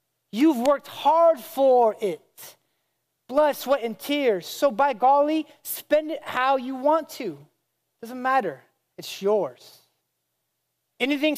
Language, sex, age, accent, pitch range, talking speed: English, male, 30-49, American, 195-270 Hz, 120 wpm